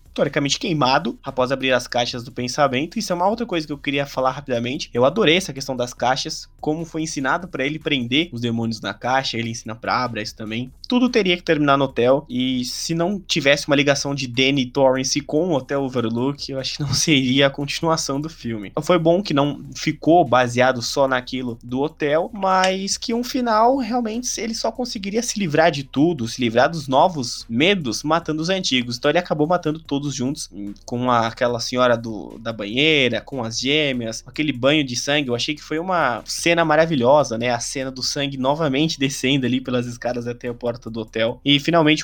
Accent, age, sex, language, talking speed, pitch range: Brazilian, 20-39, male, Portuguese, 205 wpm, 125-170 Hz